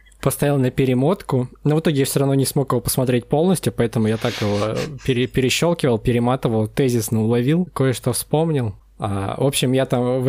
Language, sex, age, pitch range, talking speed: Russian, male, 20-39, 115-145 Hz, 180 wpm